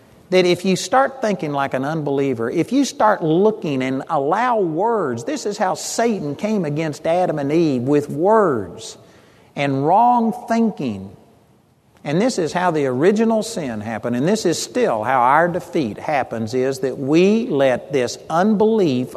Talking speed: 160 wpm